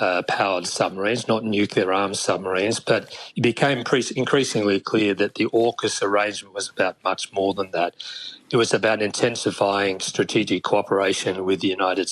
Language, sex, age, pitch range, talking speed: English, male, 40-59, 100-115 Hz, 155 wpm